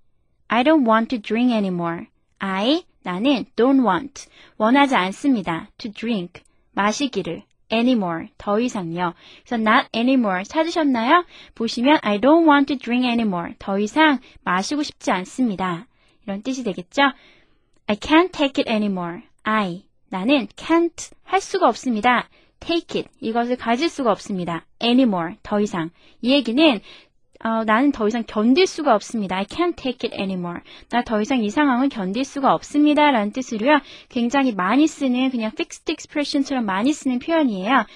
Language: Korean